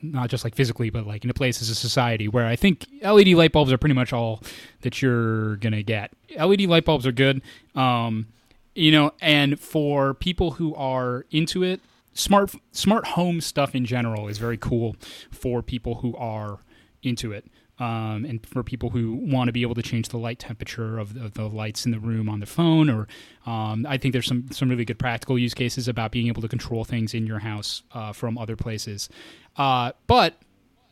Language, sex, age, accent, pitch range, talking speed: English, male, 20-39, American, 115-145 Hz, 210 wpm